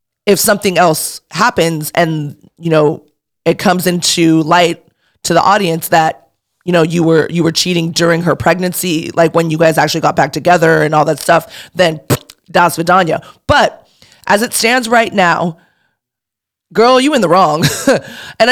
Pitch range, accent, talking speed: 165-230 Hz, American, 165 wpm